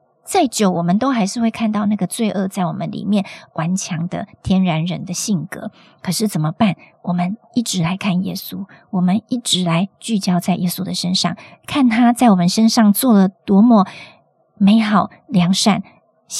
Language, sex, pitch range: Chinese, male, 180-220 Hz